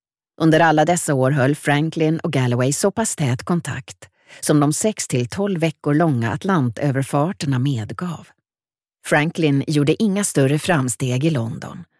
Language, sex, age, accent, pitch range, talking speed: Swedish, female, 40-59, native, 135-175 Hz, 135 wpm